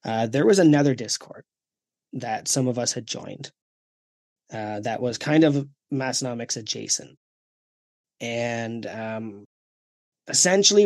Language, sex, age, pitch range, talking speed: English, male, 20-39, 115-140 Hz, 115 wpm